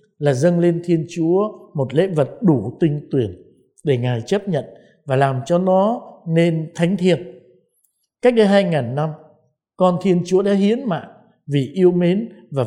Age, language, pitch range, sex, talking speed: 60-79, Vietnamese, 145-190 Hz, male, 170 wpm